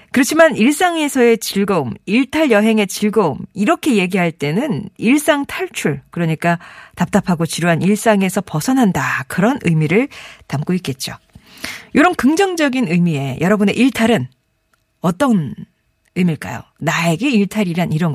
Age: 40-59